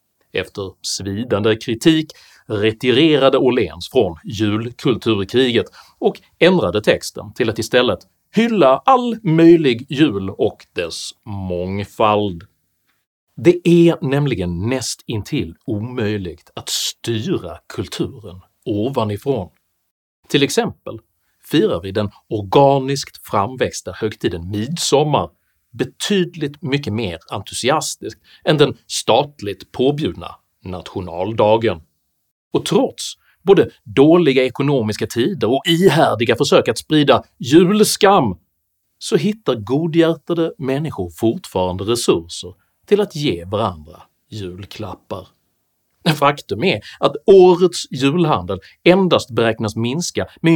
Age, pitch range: 40-59, 105-160 Hz